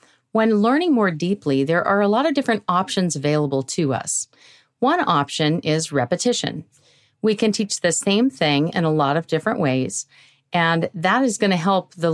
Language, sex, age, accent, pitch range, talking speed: English, female, 40-59, American, 150-195 Hz, 180 wpm